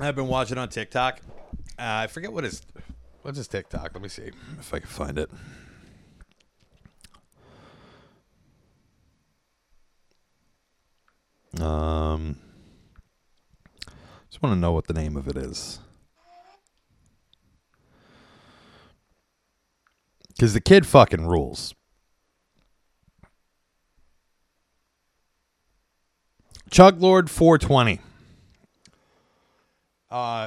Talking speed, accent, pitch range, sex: 85 wpm, American, 95-150 Hz, male